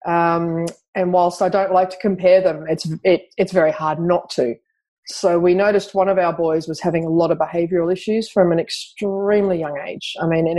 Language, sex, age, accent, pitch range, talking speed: English, female, 30-49, Australian, 175-210 Hz, 215 wpm